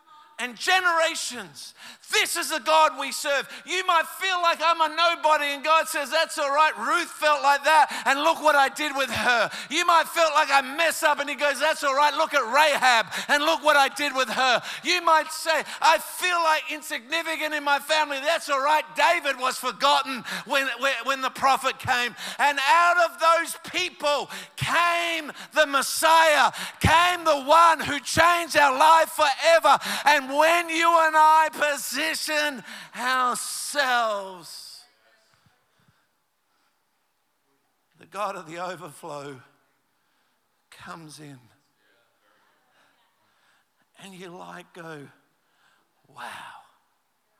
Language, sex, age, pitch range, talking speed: English, male, 50-69, 210-320 Hz, 140 wpm